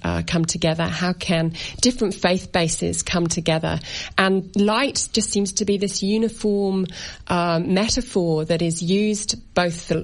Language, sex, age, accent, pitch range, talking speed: English, female, 40-59, British, 165-200 Hz, 150 wpm